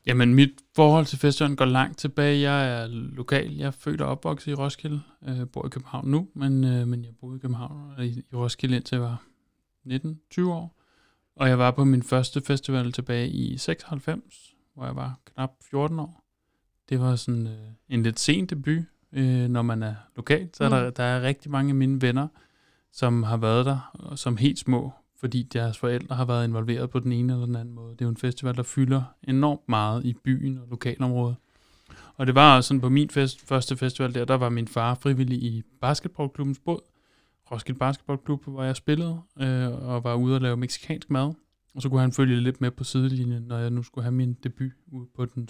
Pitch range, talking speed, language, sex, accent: 120-140 Hz, 205 wpm, Danish, male, native